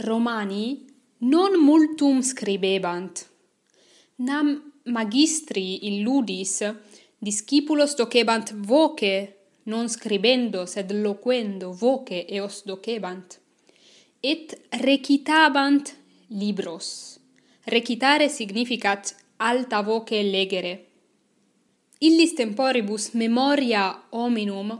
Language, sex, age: English, female, 20-39